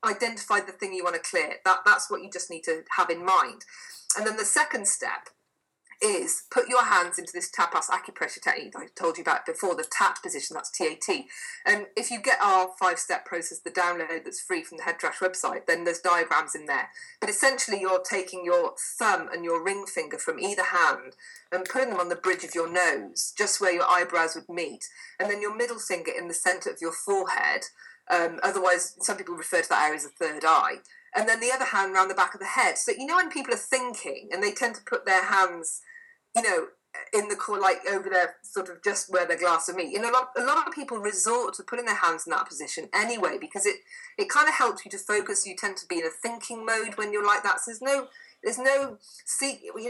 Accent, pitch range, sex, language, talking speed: British, 185-275 Hz, female, English, 240 wpm